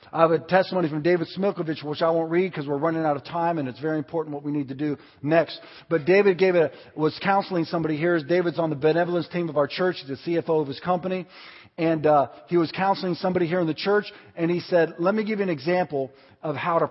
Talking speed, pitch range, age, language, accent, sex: 250 wpm, 140-175 Hz, 40-59, English, American, male